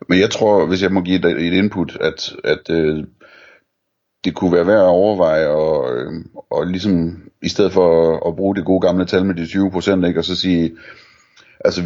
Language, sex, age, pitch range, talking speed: Danish, male, 30-49, 80-90 Hz, 195 wpm